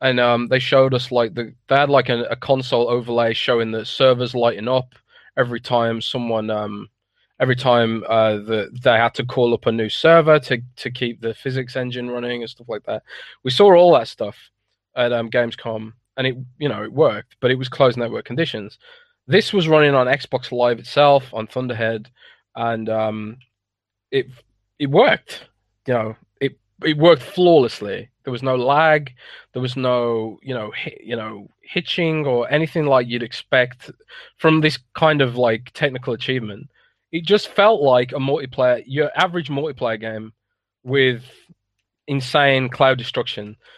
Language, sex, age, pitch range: English, male, 20-39, 120-140 Hz